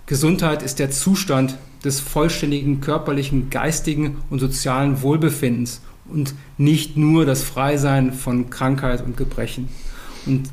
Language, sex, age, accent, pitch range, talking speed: German, male, 30-49, German, 135-155 Hz, 120 wpm